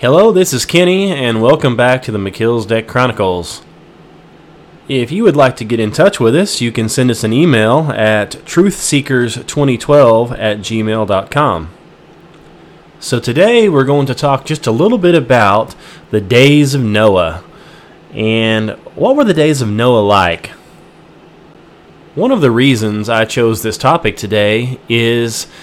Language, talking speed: English, 150 wpm